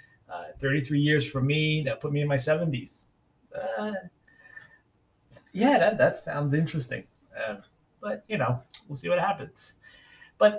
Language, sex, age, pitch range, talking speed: English, male, 30-49, 125-190 Hz, 155 wpm